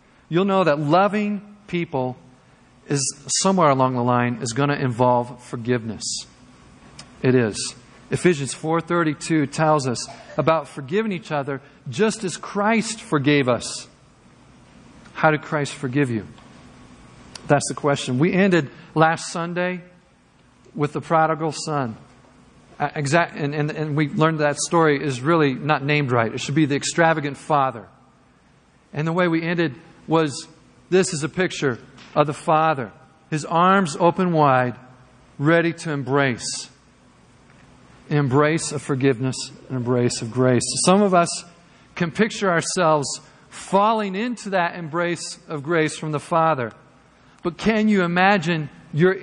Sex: male